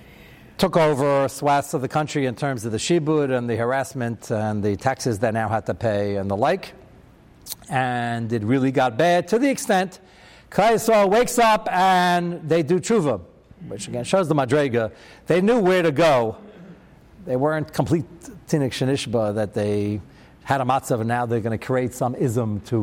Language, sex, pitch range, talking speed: English, male, 115-185 Hz, 180 wpm